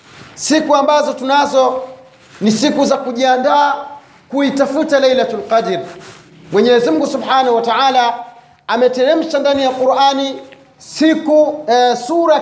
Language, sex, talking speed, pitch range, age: Swahili, male, 100 wpm, 230-275 Hz, 40-59